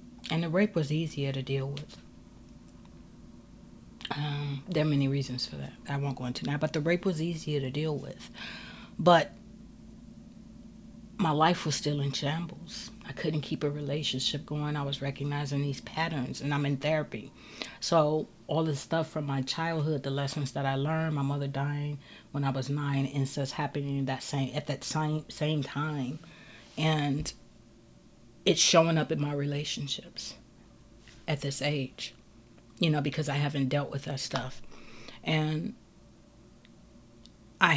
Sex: female